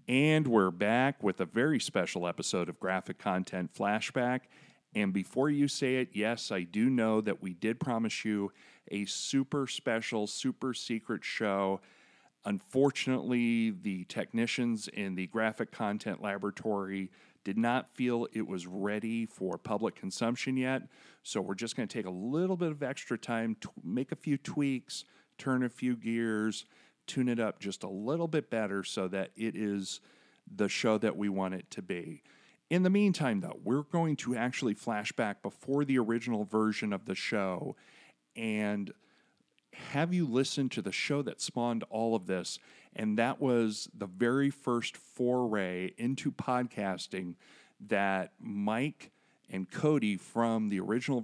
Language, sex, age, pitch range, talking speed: English, male, 40-59, 100-130 Hz, 160 wpm